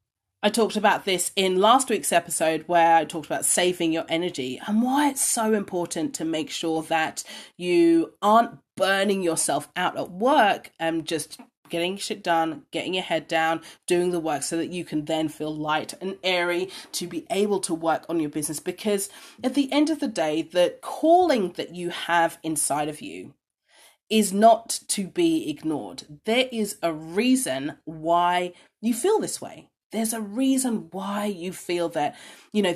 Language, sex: English, female